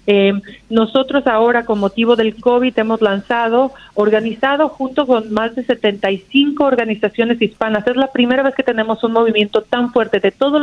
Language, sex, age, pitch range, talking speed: Spanish, female, 40-59, 200-230 Hz, 165 wpm